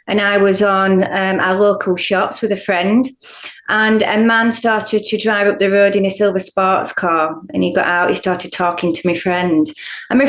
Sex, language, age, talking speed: female, English, 30-49, 215 wpm